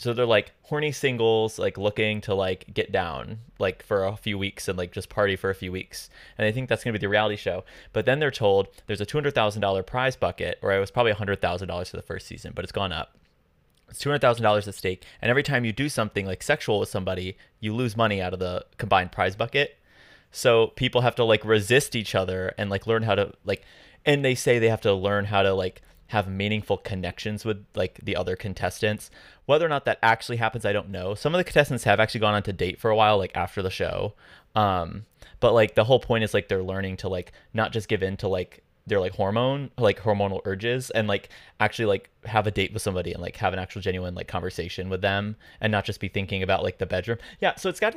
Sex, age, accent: male, 20-39, American